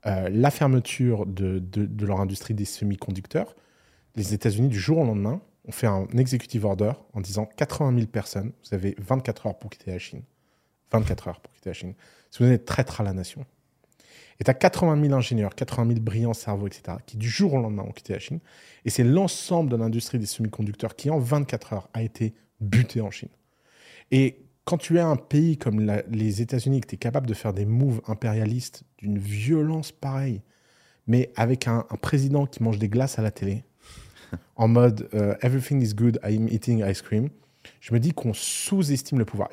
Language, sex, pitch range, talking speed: French, male, 105-130 Hz, 200 wpm